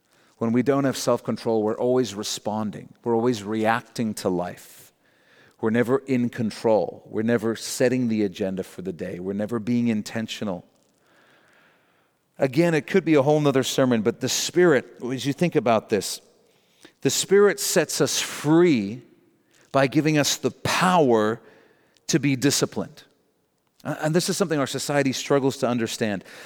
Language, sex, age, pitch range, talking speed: English, male, 40-59, 120-160 Hz, 150 wpm